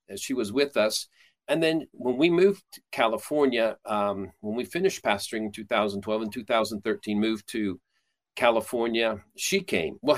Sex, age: male, 40-59